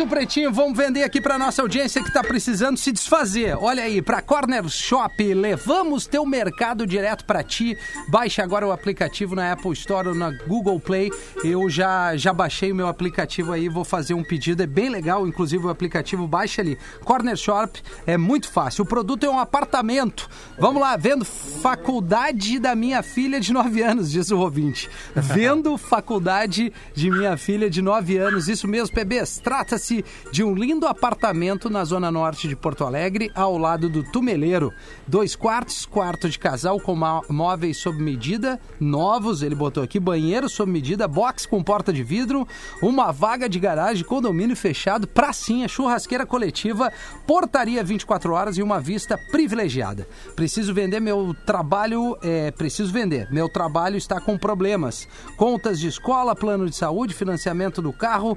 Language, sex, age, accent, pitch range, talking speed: Portuguese, male, 40-59, Brazilian, 175-235 Hz, 165 wpm